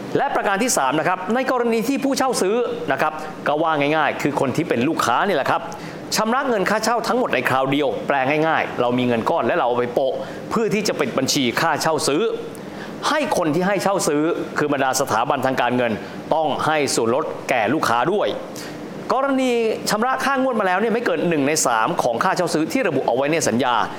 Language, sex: Thai, male